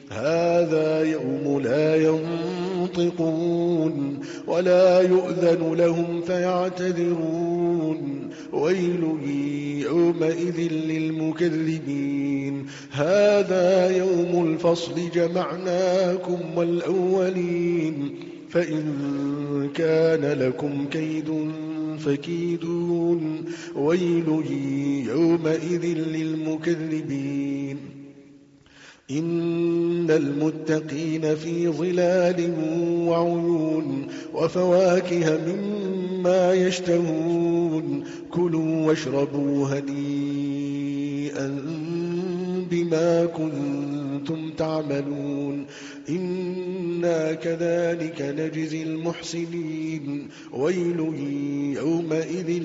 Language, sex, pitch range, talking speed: Arabic, male, 145-170 Hz, 50 wpm